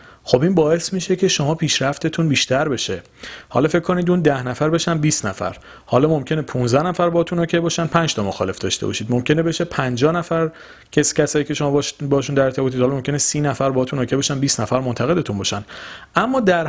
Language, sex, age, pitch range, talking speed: Persian, male, 40-59, 115-155 Hz, 190 wpm